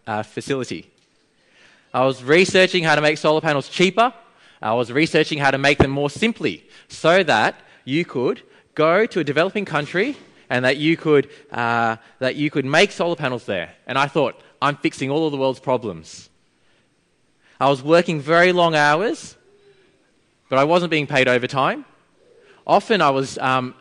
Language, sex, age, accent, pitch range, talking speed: English, male, 20-39, Australian, 135-185 Hz, 170 wpm